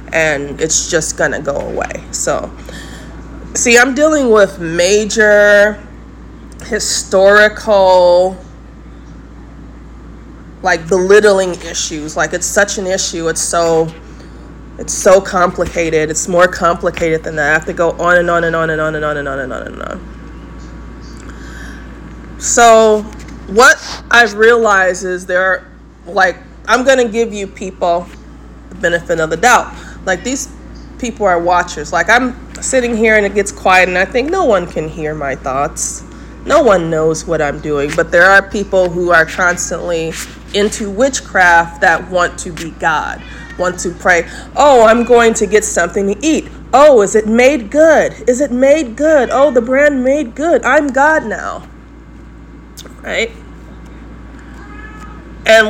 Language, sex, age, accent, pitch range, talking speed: English, female, 20-39, American, 170-230 Hz, 155 wpm